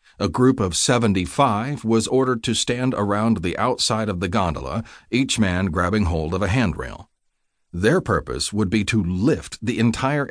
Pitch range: 85-115 Hz